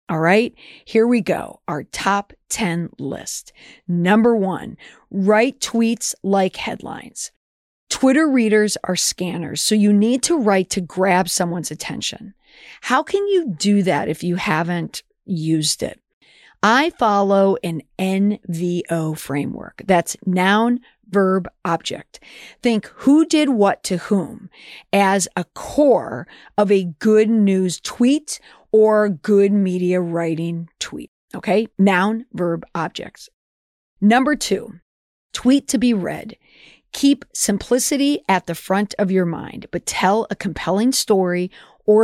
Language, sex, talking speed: English, female, 130 wpm